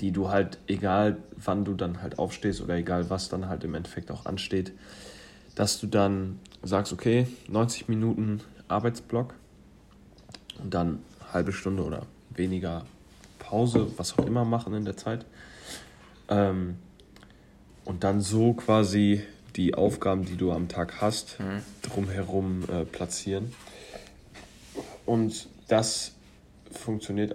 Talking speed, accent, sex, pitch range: 125 wpm, German, male, 90-110 Hz